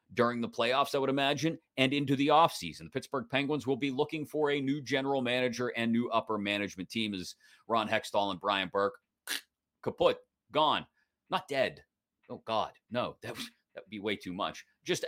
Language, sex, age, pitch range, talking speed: English, male, 30-49, 105-140 Hz, 185 wpm